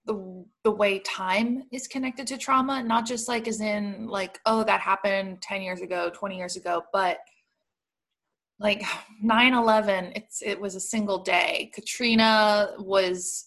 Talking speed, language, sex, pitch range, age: 150 wpm, English, female, 185-225 Hz, 20-39